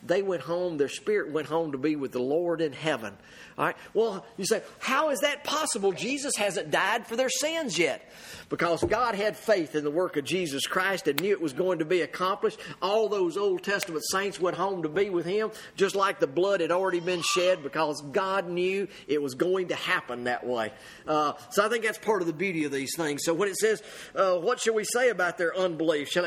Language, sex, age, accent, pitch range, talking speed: English, male, 40-59, American, 170-225 Hz, 235 wpm